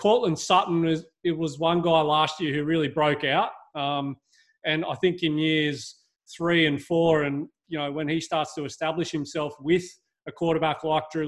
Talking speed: 190 wpm